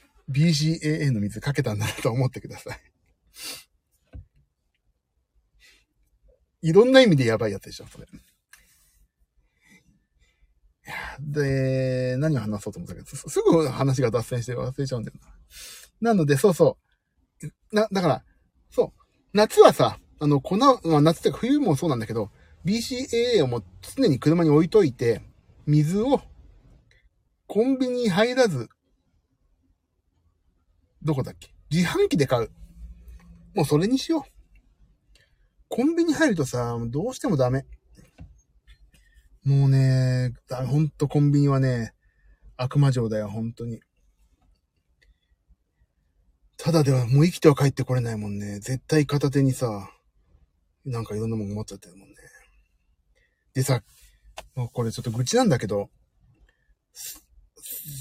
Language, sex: Japanese, male